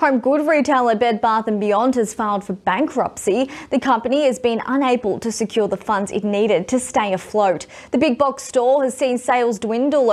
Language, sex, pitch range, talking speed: English, female, 195-250 Hz, 195 wpm